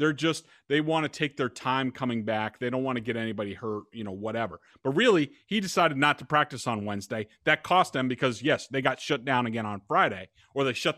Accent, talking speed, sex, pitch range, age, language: American, 240 wpm, male, 130-185 Hz, 40-59, English